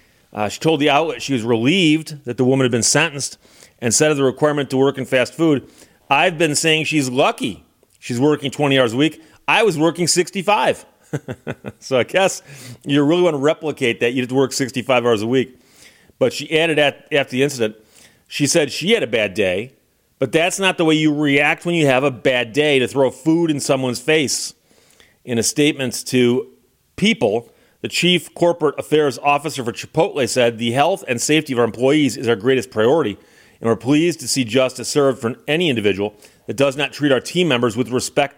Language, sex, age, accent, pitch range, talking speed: English, male, 40-59, American, 125-155 Hz, 205 wpm